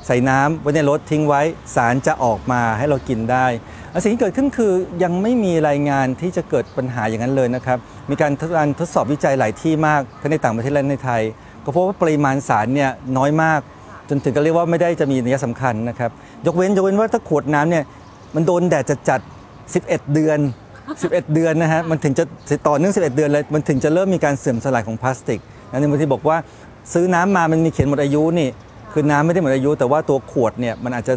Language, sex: Thai, male